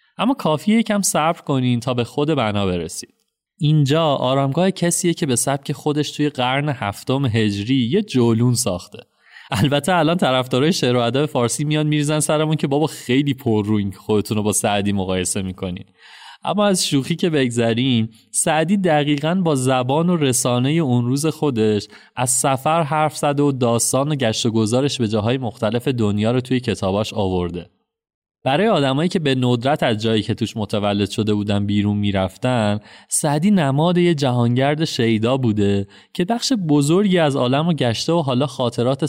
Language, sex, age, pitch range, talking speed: Persian, male, 30-49, 110-155 Hz, 160 wpm